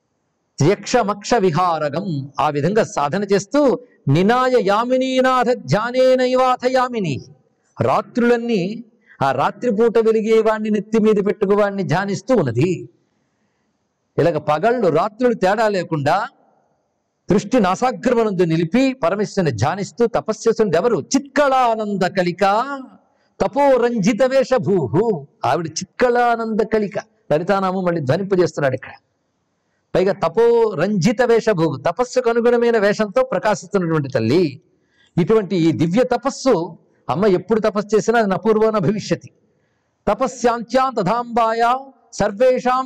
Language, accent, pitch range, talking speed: Telugu, native, 175-240 Hz, 90 wpm